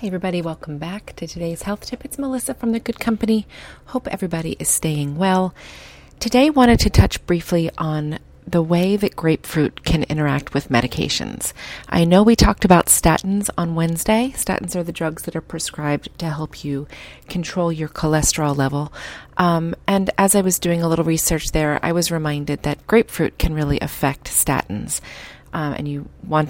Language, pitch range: English, 140-185 Hz